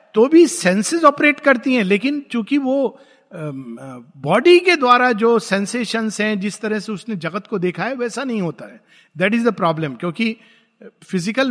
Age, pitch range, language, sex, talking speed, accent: 50-69, 180-240 Hz, Hindi, male, 170 wpm, native